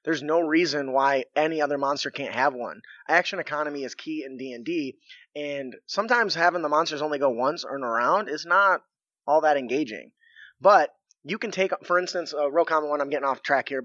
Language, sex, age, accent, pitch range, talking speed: English, male, 20-39, American, 140-180 Hz, 205 wpm